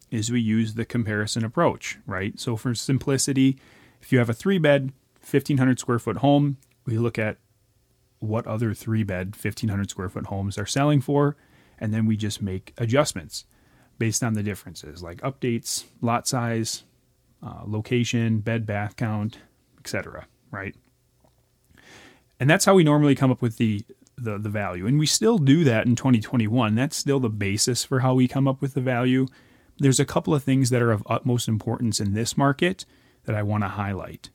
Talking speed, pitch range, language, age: 170 wpm, 110-140 Hz, English, 30-49